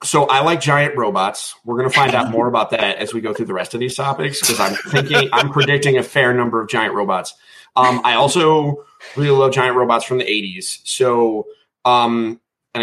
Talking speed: 215 wpm